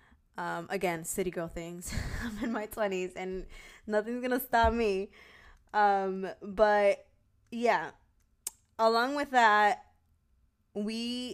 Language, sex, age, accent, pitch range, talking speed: English, female, 20-39, American, 175-205 Hz, 115 wpm